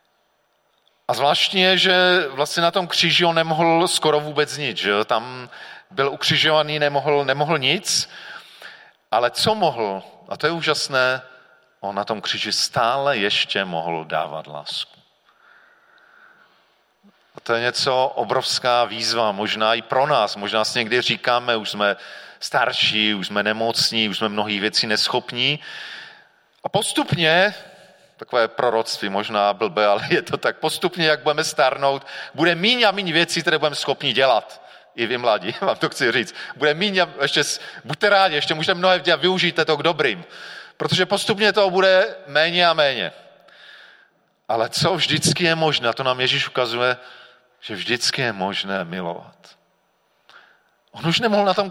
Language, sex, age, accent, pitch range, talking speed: Czech, male, 40-59, native, 120-175 Hz, 150 wpm